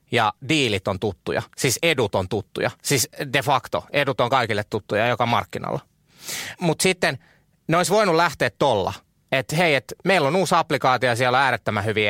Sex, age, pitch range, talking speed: male, 30-49, 110-160 Hz, 180 wpm